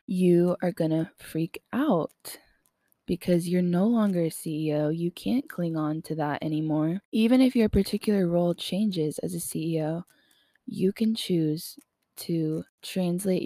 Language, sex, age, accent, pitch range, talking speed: English, female, 20-39, American, 160-185 Hz, 145 wpm